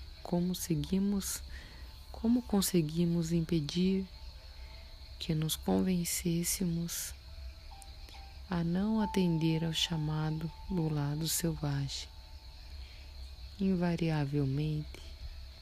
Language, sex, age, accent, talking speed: Portuguese, female, 30-49, Brazilian, 60 wpm